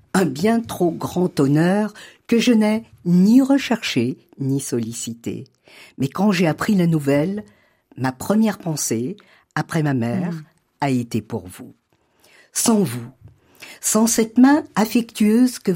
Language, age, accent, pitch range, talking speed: French, 50-69, French, 135-200 Hz, 135 wpm